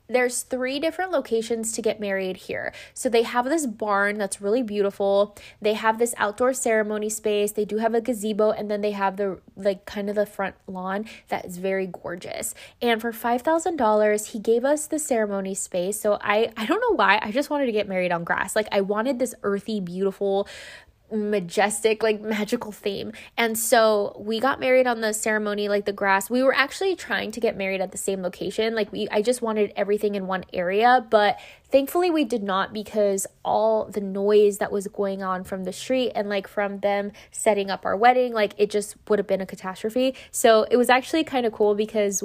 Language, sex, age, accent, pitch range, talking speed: English, female, 20-39, American, 200-240 Hz, 205 wpm